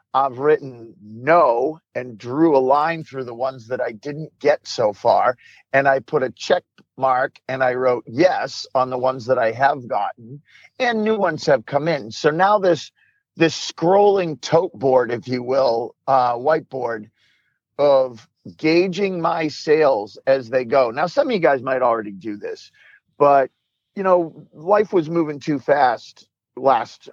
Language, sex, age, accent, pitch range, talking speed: English, male, 50-69, American, 125-165 Hz, 170 wpm